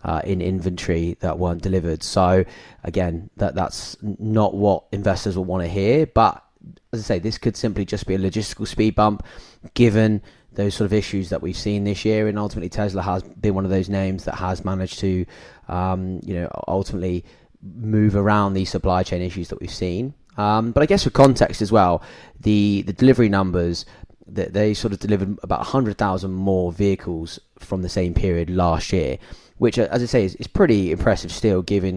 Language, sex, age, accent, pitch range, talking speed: English, male, 20-39, British, 90-105 Hz, 200 wpm